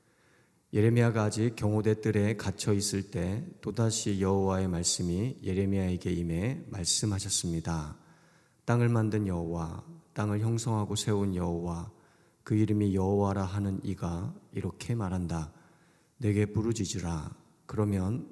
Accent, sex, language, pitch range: native, male, Korean, 90-110 Hz